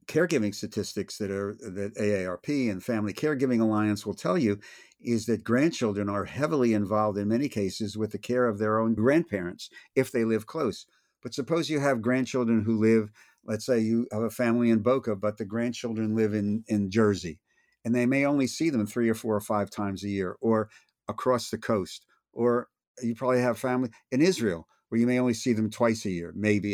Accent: American